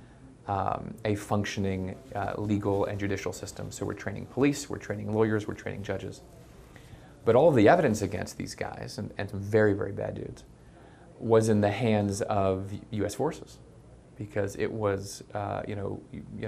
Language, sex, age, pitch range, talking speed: English, male, 30-49, 95-110 Hz, 175 wpm